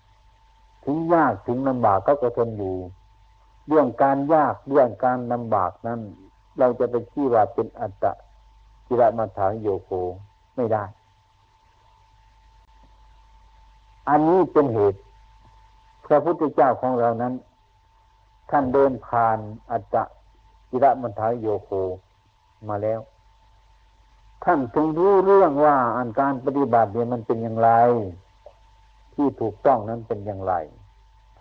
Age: 60-79